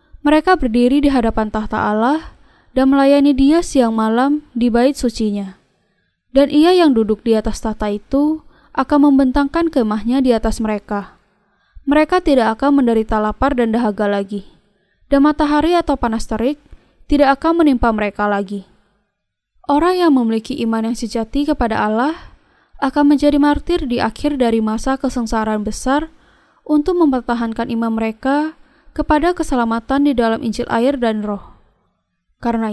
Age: 10-29